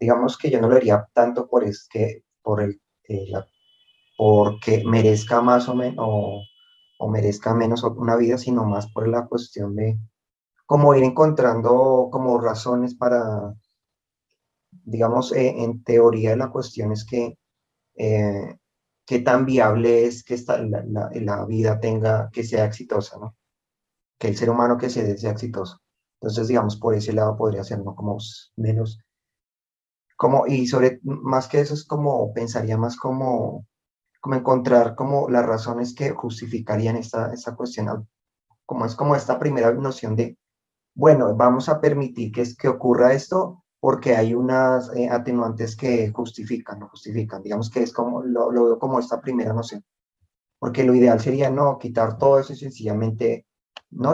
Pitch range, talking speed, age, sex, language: 110-125 Hz, 160 wpm, 30-49, male, Spanish